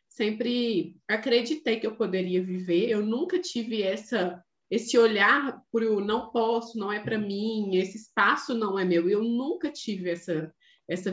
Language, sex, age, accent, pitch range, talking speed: Portuguese, female, 20-39, Brazilian, 210-255 Hz, 160 wpm